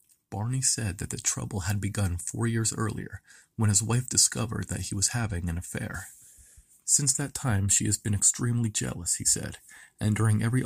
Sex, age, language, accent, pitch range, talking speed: male, 40-59, English, American, 100-120 Hz, 185 wpm